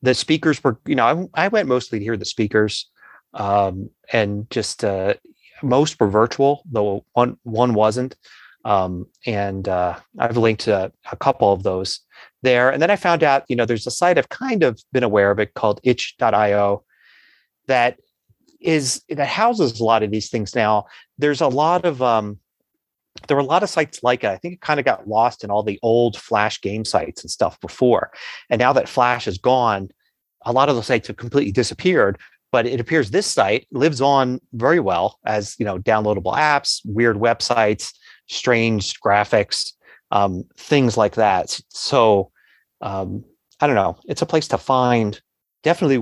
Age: 30-49